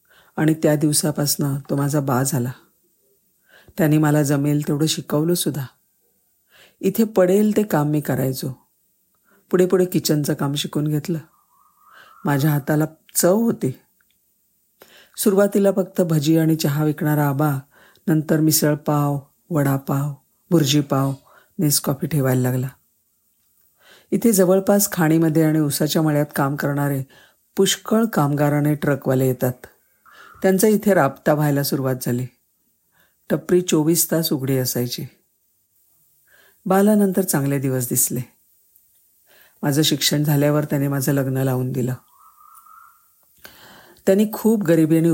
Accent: native